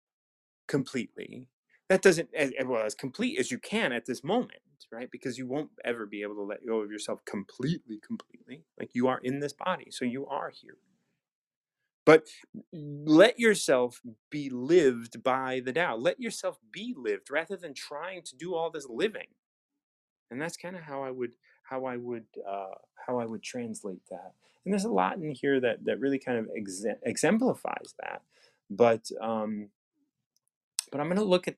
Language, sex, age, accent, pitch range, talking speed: English, male, 30-49, American, 120-175 Hz, 180 wpm